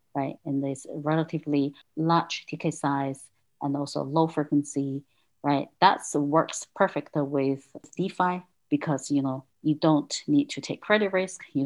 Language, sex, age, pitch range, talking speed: English, female, 40-59, 140-160 Hz, 145 wpm